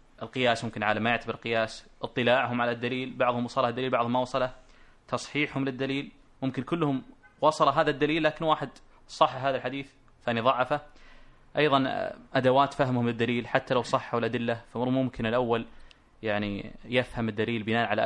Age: 20-39